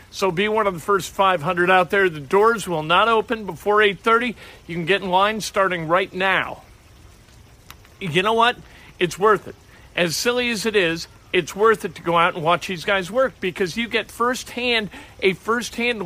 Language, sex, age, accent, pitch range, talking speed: English, male, 50-69, American, 180-225 Hz, 195 wpm